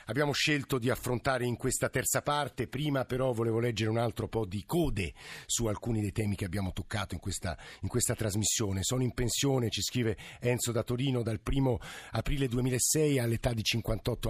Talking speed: 185 wpm